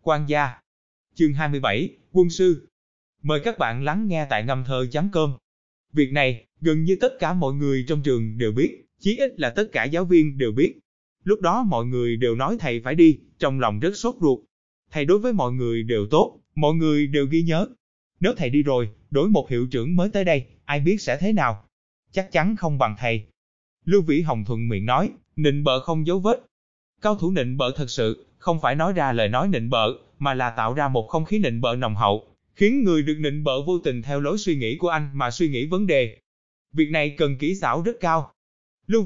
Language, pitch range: Vietnamese, 125-175 Hz